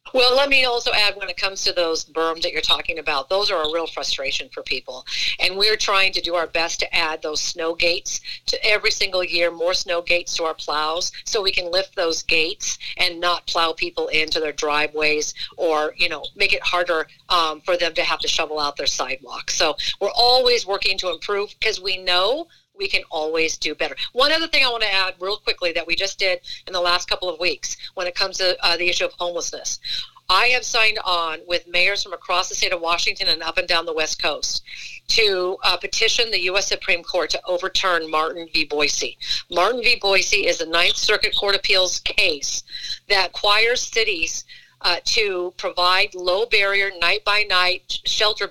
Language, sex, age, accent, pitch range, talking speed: English, female, 50-69, American, 170-205 Hz, 210 wpm